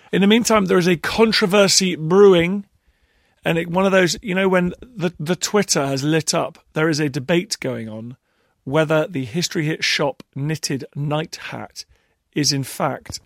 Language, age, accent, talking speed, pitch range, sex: English, 40-59, British, 175 wpm, 130-170 Hz, male